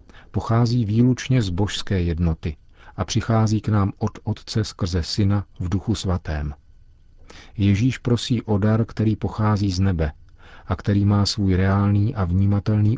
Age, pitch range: 40-59, 85-105 Hz